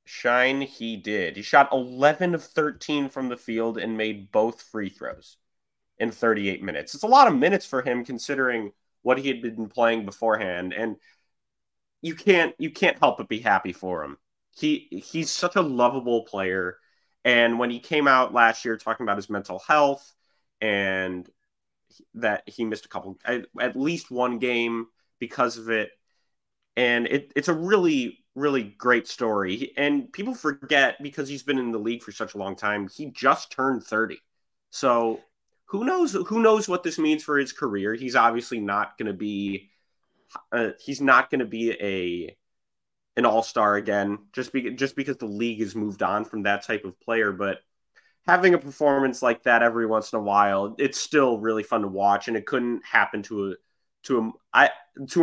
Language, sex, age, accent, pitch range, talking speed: English, male, 30-49, American, 105-140 Hz, 180 wpm